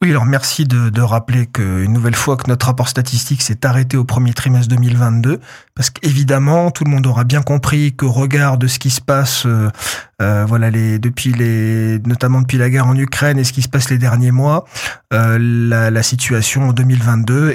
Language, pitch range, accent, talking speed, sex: French, 120-140 Hz, French, 210 wpm, male